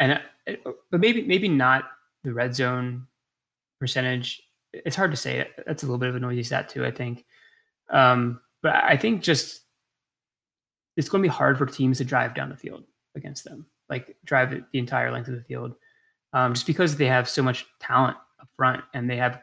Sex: male